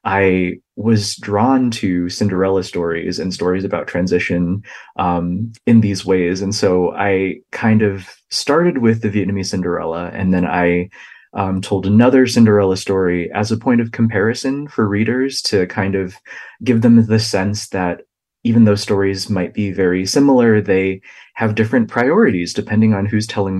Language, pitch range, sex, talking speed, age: English, 95-110 Hz, male, 160 wpm, 20-39